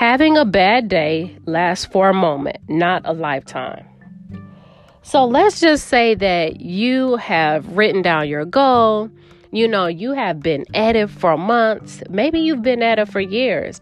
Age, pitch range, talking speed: 40-59, 185-250 Hz, 165 wpm